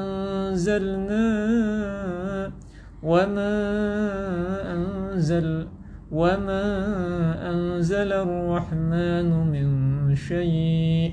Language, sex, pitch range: Indonesian, male, 140-190 Hz